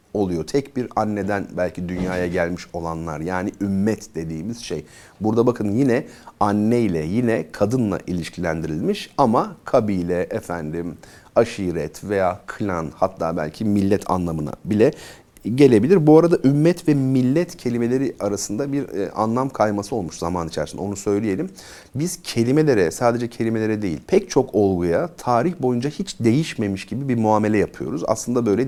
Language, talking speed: Turkish, 135 wpm